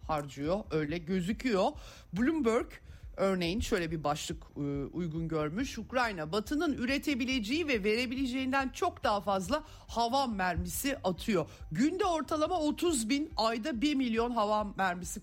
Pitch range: 170-245 Hz